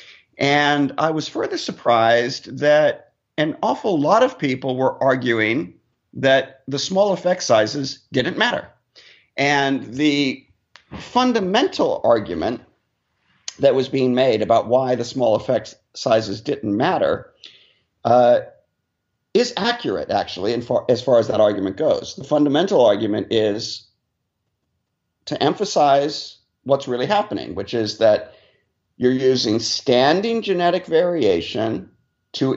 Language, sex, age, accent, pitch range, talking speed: English, male, 50-69, American, 120-155 Hz, 120 wpm